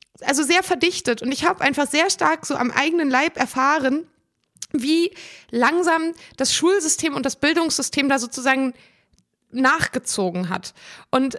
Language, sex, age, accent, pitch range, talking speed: German, female, 20-39, German, 255-310 Hz, 135 wpm